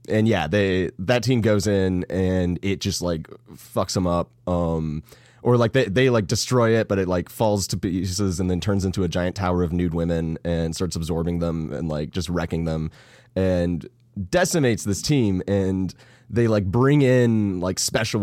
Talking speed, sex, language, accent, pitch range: 190 wpm, male, English, American, 90-120 Hz